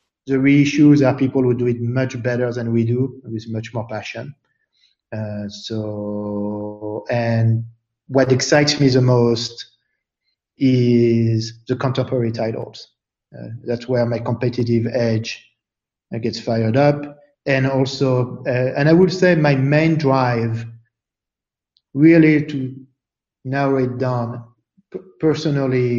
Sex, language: male, English